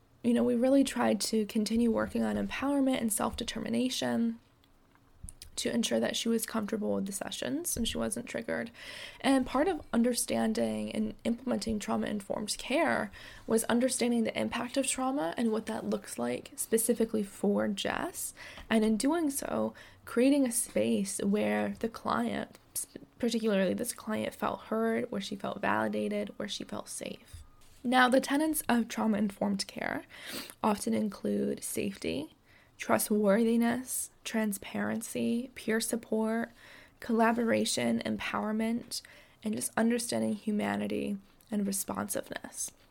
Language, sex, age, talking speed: English, female, 10-29, 125 wpm